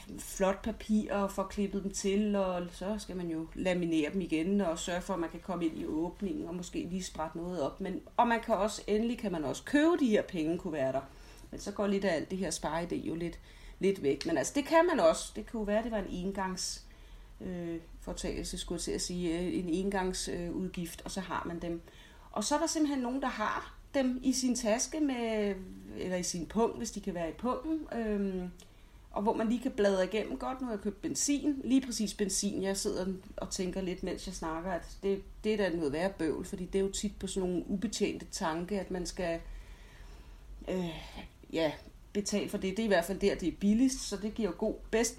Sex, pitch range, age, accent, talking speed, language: female, 175-220 Hz, 40-59, native, 230 wpm, Danish